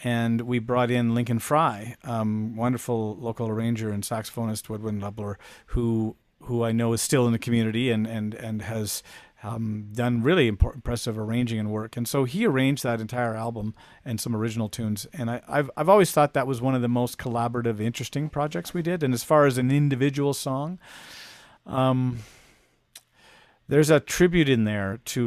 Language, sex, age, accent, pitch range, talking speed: English, male, 40-59, American, 115-135 Hz, 180 wpm